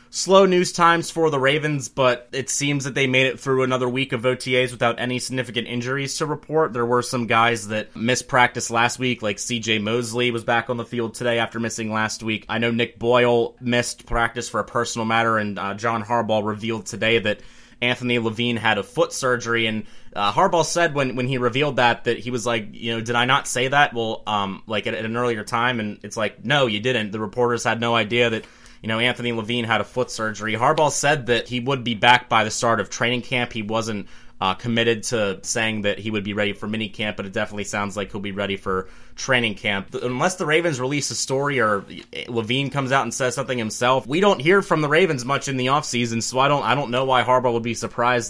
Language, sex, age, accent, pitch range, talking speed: English, male, 30-49, American, 110-125 Hz, 235 wpm